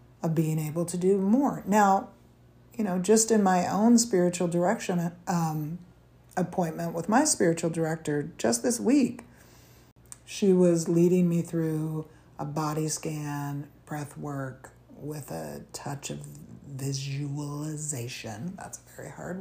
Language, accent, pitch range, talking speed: English, American, 145-190 Hz, 135 wpm